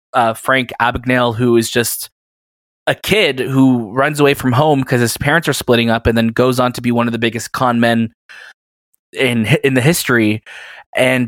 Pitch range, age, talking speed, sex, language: 115-135 Hz, 20-39, 190 wpm, male, English